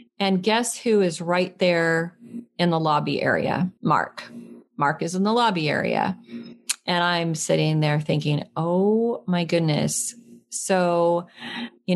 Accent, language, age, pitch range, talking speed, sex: American, English, 40-59, 160-205 Hz, 135 wpm, female